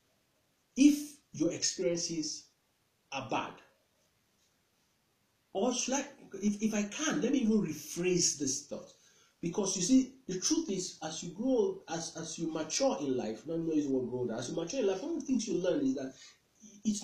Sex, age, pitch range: male, 50-69, 135-210 Hz